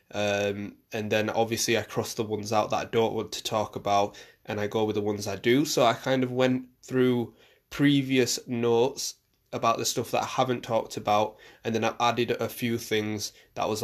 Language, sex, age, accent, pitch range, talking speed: English, male, 20-39, British, 110-135 Hz, 215 wpm